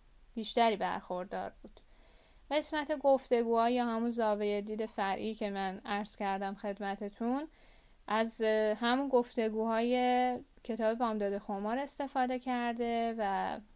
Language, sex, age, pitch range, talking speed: Persian, female, 10-29, 210-245 Hz, 105 wpm